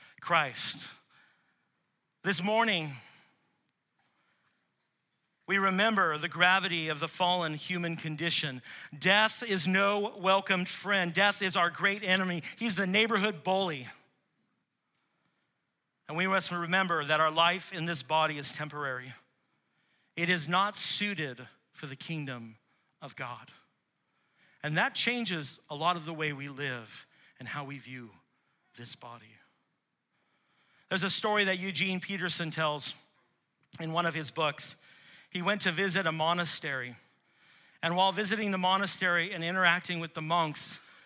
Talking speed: 135 wpm